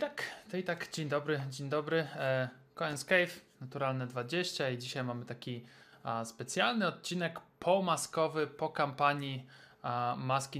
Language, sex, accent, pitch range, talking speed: Polish, male, native, 125-155 Hz, 145 wpm